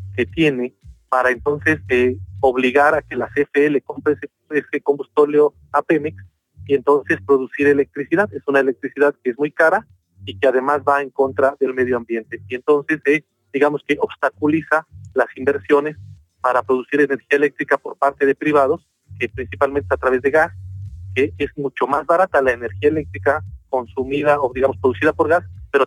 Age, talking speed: 40-59, 175 wpm